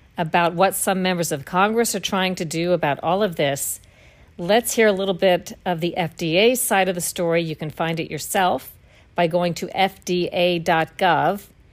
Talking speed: 180 wpm